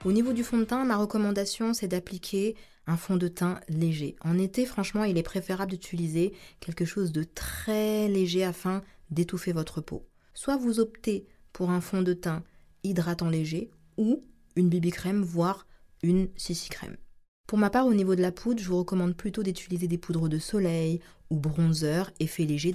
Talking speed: 185 wpm